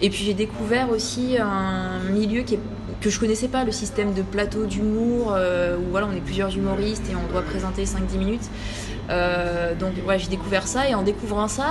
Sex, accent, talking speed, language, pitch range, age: female, French, 210 wpm, French, 190-240 Hz, 20-39